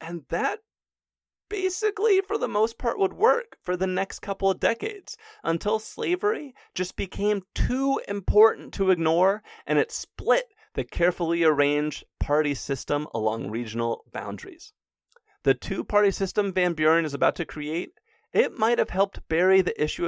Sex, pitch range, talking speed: male, 140-210 Hz, 150 wpm